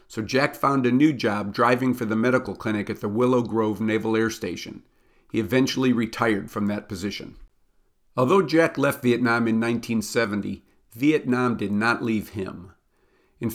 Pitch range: 110-130 Hz